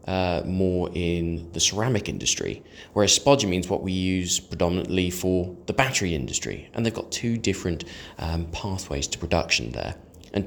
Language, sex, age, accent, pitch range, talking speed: English, male, 20-39, British, 85-110 Hz, 160 wpm